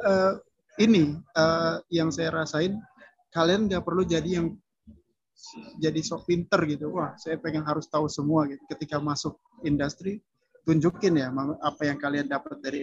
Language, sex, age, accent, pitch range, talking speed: Indonesian, male, 30-49, native, 150-195 Hz, 150 wpm